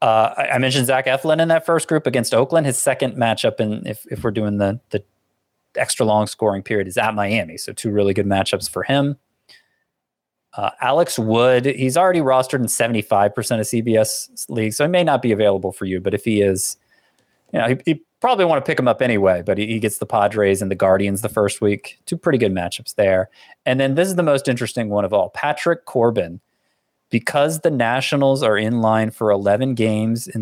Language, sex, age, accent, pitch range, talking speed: English, male, 20-39, American, 105-155 Hz, 210 wpm